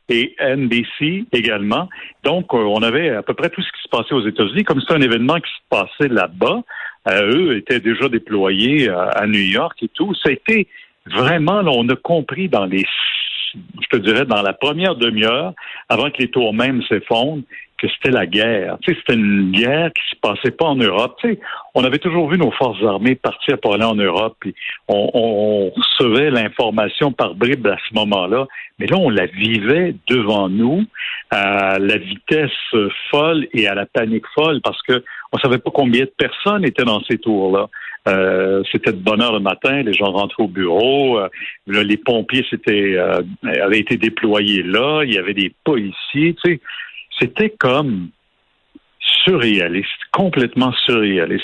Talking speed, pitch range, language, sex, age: 180 wpm, 100-145 Hz, French, male, 60-79